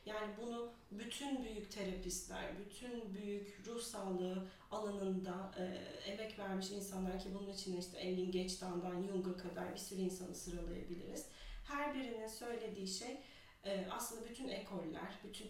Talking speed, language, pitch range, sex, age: 130 wpm, Turkish, 185-225 Hz, female, 30-49